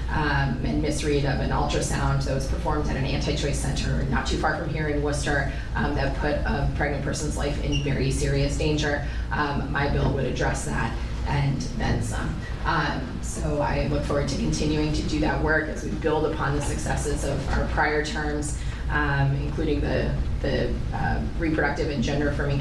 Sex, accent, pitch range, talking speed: female, American, 140-170 Hz, 185 wpm